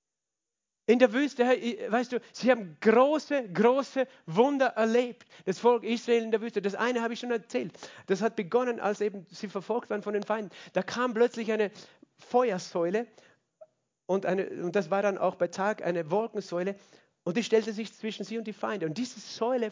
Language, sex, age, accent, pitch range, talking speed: German, male, 50-69, German, 190-240 Hz, 190 wpm